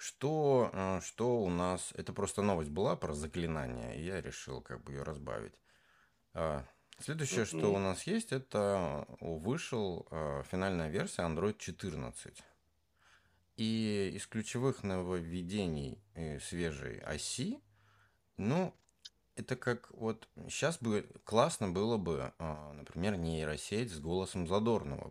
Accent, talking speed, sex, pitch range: native, 115 wpm, male, 80-105 Hz